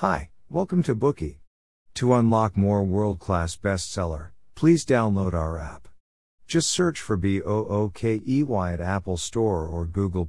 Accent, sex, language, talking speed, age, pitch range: American, male, English, 130 wpm, 50-69, 90-120 Hz